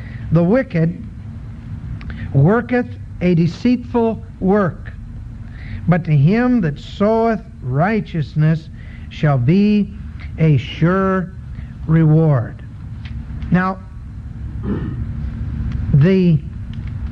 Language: English